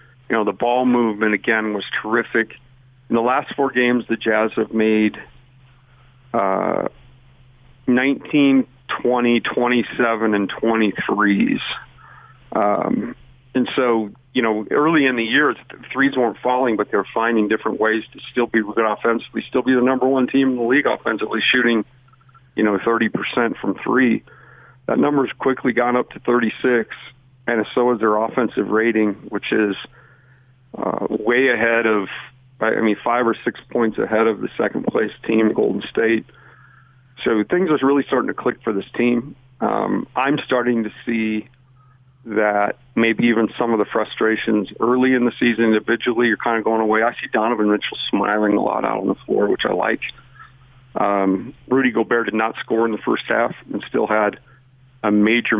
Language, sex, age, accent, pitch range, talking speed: English, male, 50-69, American, 110-130 Hz, 170 wpm